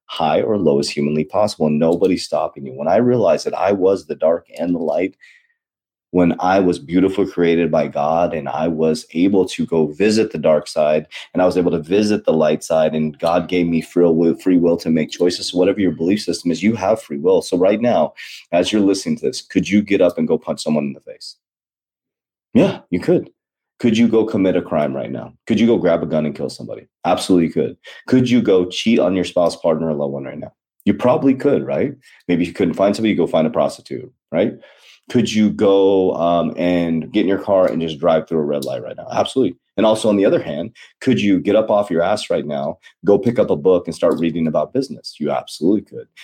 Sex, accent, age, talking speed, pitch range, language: male, American, 30-49, 235 wpm, 80-105 Hz, English